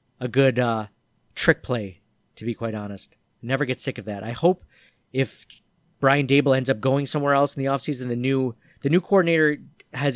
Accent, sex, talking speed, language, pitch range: American, male, 195 wpm, English, 120-140 Hz